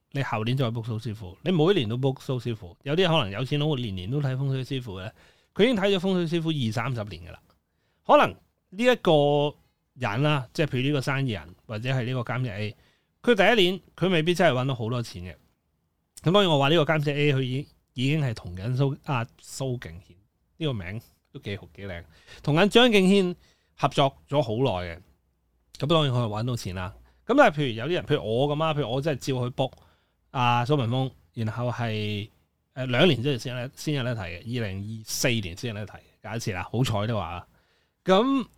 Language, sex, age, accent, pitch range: Chinese, male, 30-49, native, 100-145 Hz